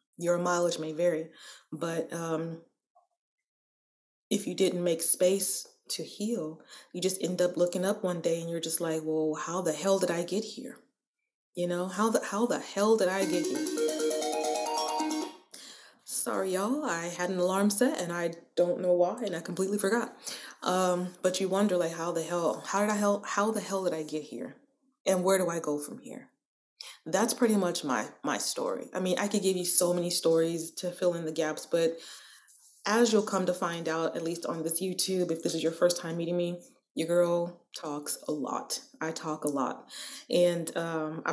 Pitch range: 165-200 Hz